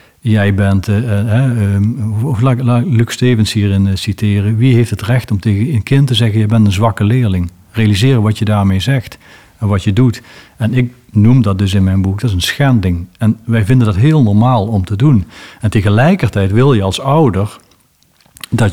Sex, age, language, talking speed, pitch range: male, 50-69, Dutch, 190 wpm, 100-120 Hz